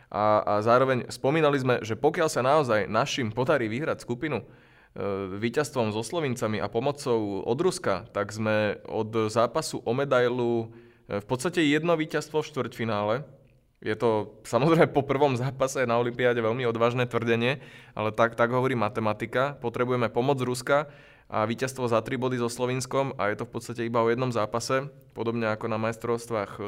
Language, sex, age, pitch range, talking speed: Slovak, male, 20-39, 110-135 Hz, 165 wpm